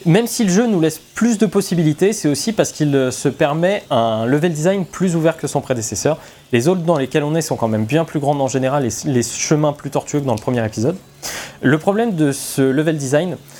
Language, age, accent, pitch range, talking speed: French, 20-39, French, 130-180 Hz, 235 wpm